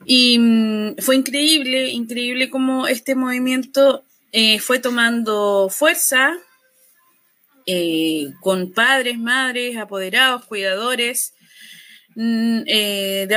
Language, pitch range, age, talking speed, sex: Spanish, 220-265 Hz, 20-39, 95 wpm, female